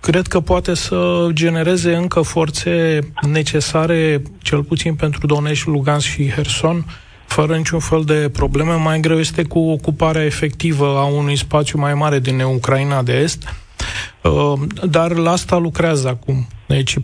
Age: 30-49